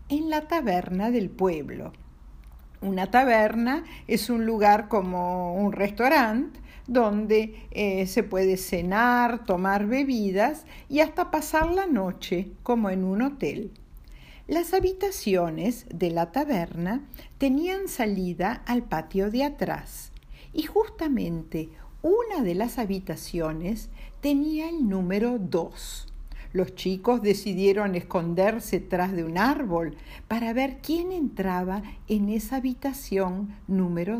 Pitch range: 185-280 Hz